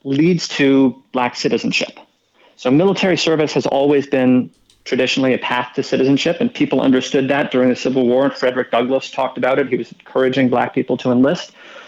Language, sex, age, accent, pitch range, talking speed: English, male, 40-59, American, 125-150 Hz, 180 wpm